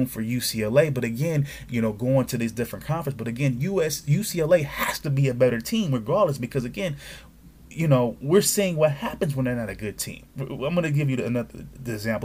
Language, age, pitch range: English, 20-39, 110-140 Hz